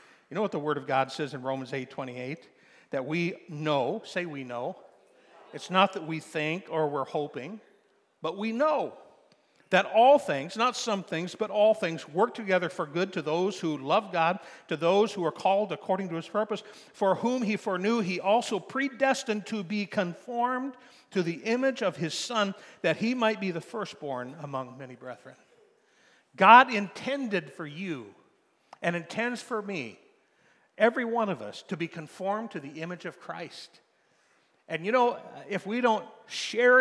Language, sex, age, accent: English, male, 50-69, American